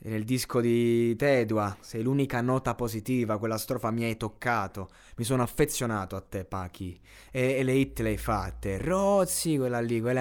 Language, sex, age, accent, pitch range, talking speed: Italian, male, 20-39, native, 105-125 Hz, 175 wpm